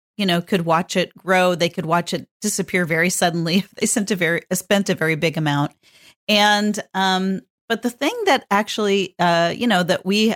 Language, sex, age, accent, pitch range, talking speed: English, female, 40-59, American, 170-215 Hz, 205 wpm